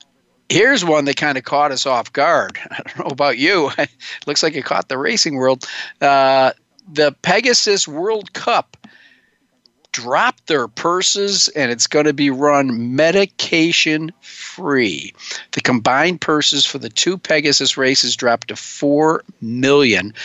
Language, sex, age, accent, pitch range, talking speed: English, male, 50-69, American, 125-150 Hz, 140 wpm